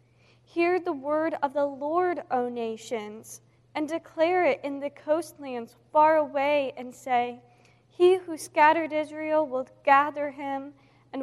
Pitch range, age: 230-300 Hz, 10-29